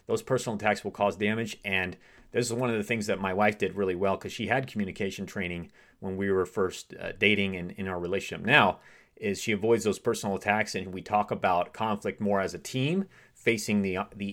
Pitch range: 95-125 Hz